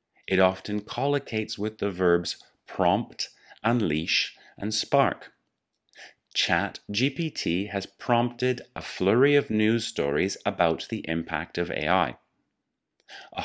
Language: English